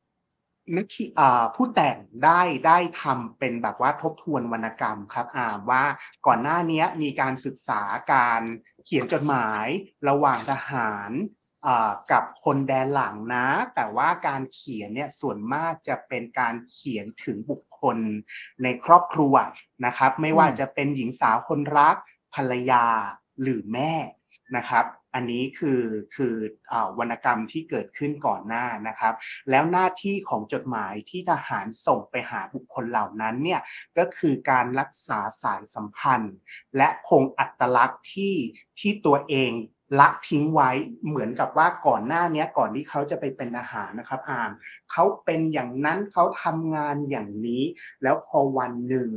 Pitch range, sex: 125-160 Hz, male